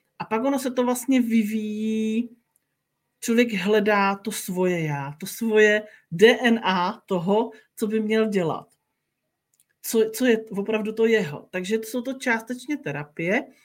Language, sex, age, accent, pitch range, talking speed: Czech, male, 40-59, native, 195-230 Hz, 140 wpm